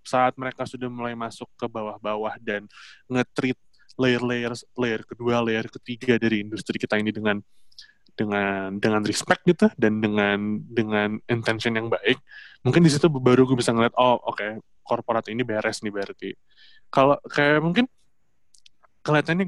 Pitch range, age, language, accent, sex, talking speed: 115-160 Hz, 20-39, Indonesian, native, male, 150 wpm